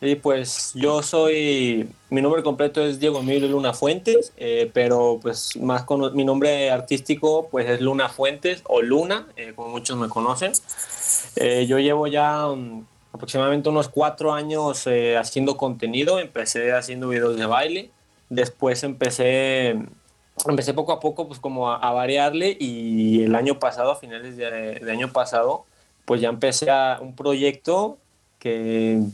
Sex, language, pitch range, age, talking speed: male, Spanish, 120-150 Hz, 20-39, 155 wpm